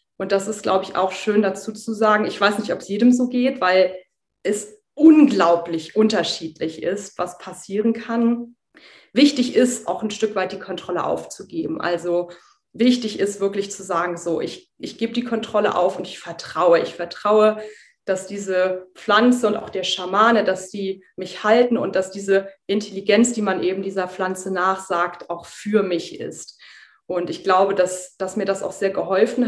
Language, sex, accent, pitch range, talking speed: German, female, German, 185-220 Hz, 180 wpm